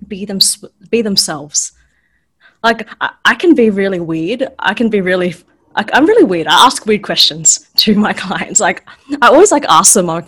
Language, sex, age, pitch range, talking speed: English, female, 20-39, 185-265 Hz, 195 wpm